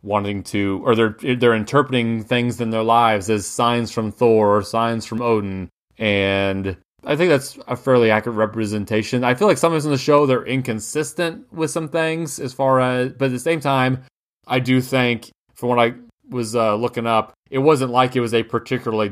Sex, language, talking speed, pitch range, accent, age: male, English, 200 wpm, 105-120 Hz, American, 30-49